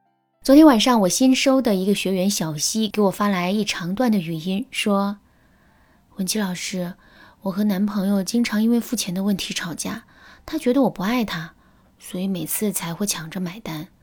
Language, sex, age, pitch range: Chinese, female, 20-39, 185-240 Hz